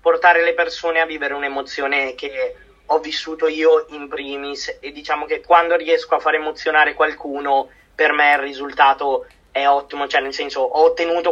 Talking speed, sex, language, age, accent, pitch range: 170 wpm, male, Italian, 20-39, native, 140-165 Hz